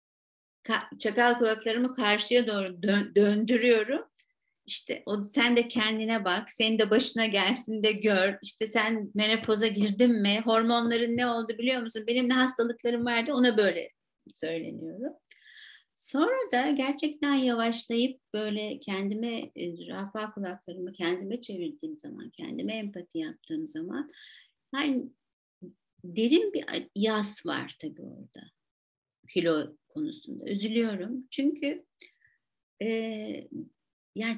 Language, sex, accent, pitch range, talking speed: Turkish, female, native, 210-270 Hz, 115 wpm